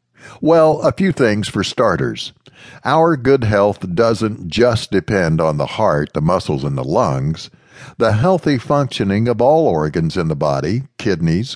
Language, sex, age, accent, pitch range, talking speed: English, male, 60-79, American, 95-130 Hz, 155 wpm